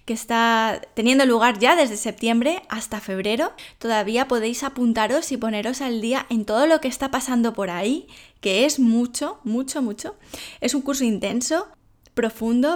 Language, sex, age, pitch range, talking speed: English, female, 20-39, 220-255 Hz, 155 wpm